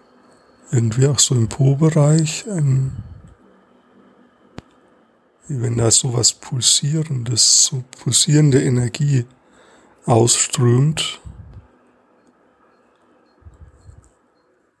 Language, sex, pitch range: German, male, 120-150 Hz